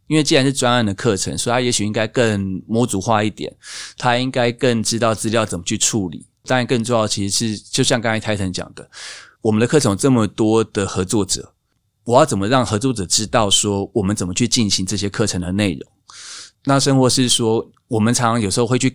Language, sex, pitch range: Chinese, male, 100-125 Hz